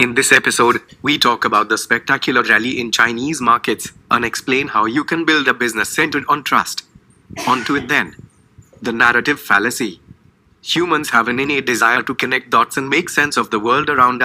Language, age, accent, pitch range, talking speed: English, 30-49, Indian, 120-140 Hz, 190 wpm